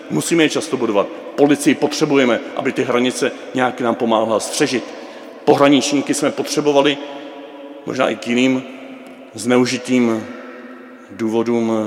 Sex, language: male, Czech